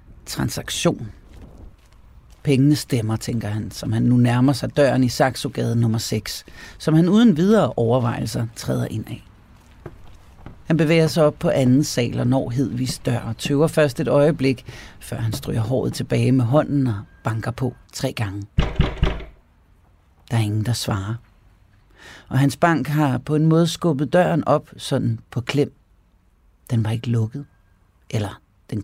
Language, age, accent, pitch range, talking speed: Danish, 40-59, native, 110-140 Hz, 155 wpm